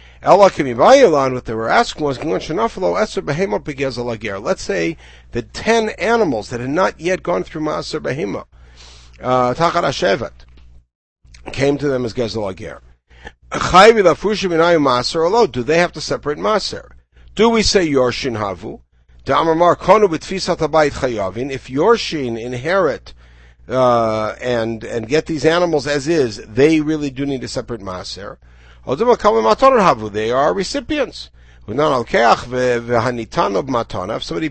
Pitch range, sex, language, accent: 95-160 Hz, male, English, American